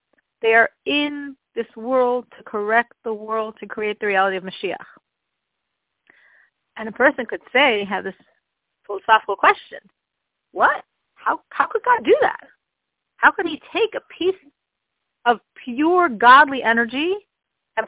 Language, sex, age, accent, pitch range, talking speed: English, female, 40-59, American, 225-335 Hz, 140 wpm